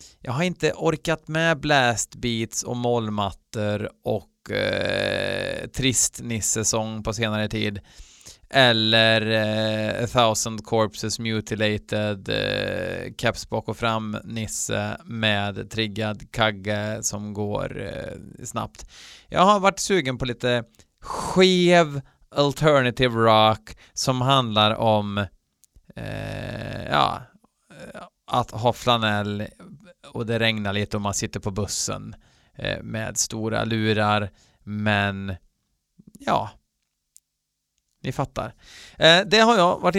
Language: Swedish